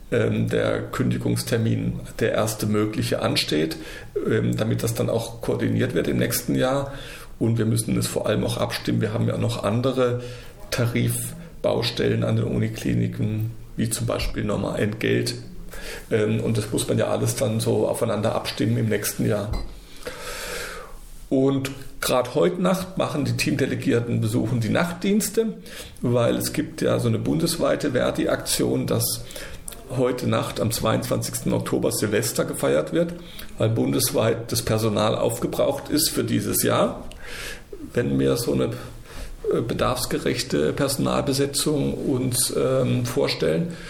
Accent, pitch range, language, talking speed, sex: German, 90-135 Hz, German, 130 wpm, male